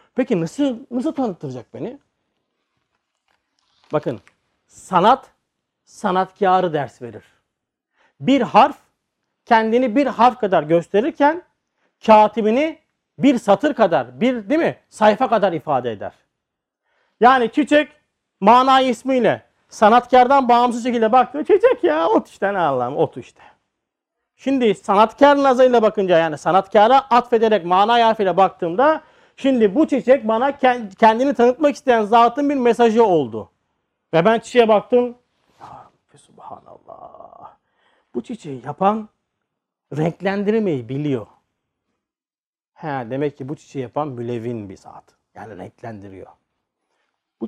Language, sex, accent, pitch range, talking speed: Turkish, male, native, 180-255 Hz, 110 wpm